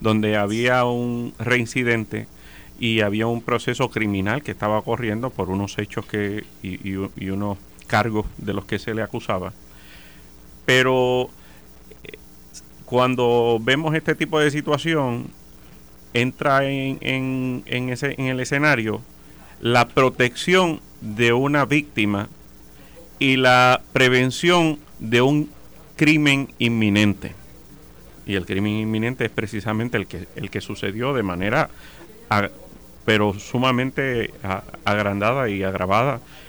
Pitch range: 100-130 Hz